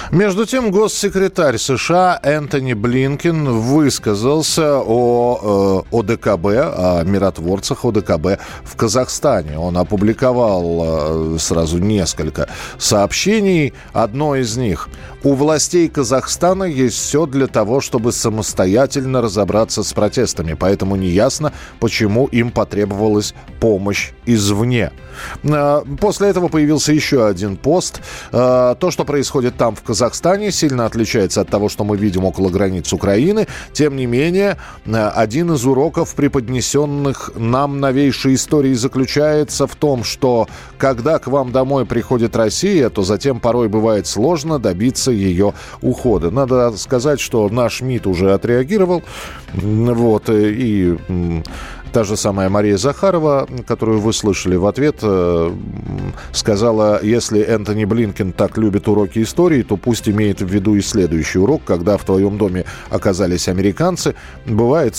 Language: Russian